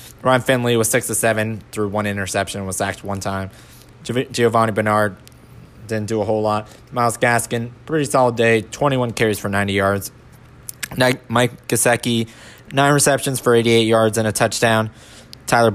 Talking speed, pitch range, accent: 160 wpm, 105-120 Hz, American